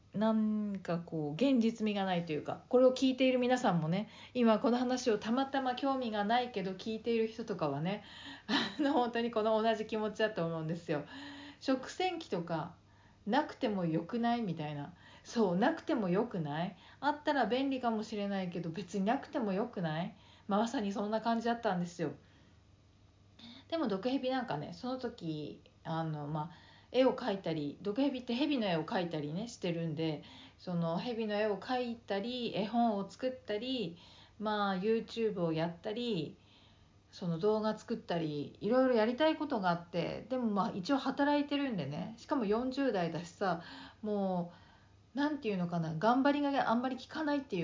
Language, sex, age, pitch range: Japanese, female, 40-59, 175-245 Hz